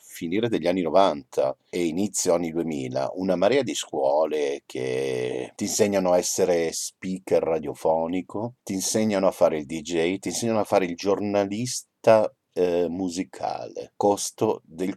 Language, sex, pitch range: Italian, male, 85-115 Hz